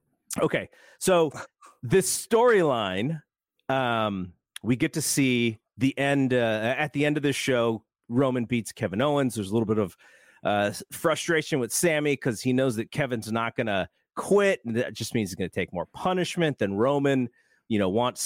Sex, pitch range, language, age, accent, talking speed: male, 105-150 Hz, English, 30-49, American, 180 wpm